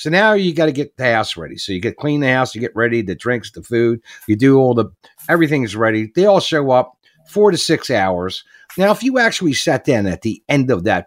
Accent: American